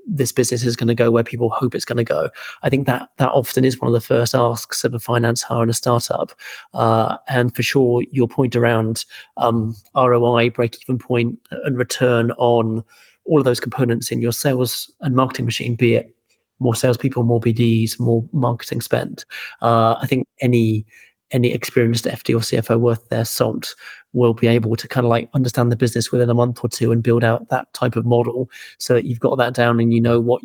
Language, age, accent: English, 30-49, British